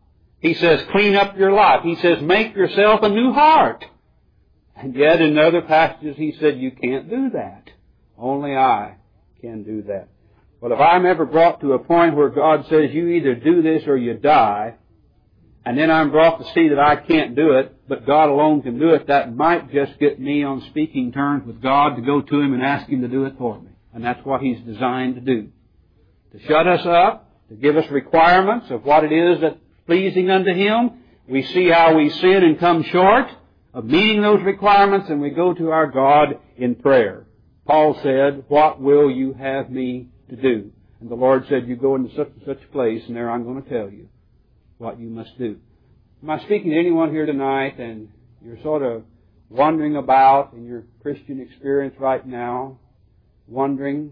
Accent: American